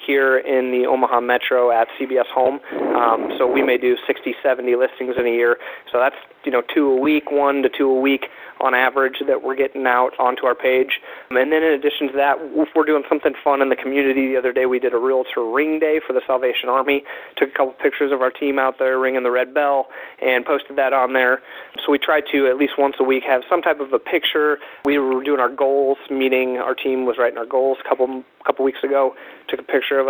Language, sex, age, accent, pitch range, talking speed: English, male, 30-49, American, 130-145 Hz, 240 wpm